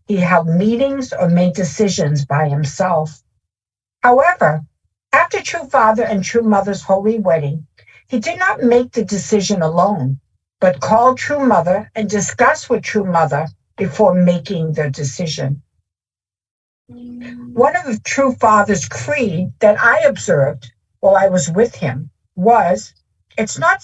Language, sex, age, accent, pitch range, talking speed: English, female, 60-79, American, 150-230 Hz, 135 wpm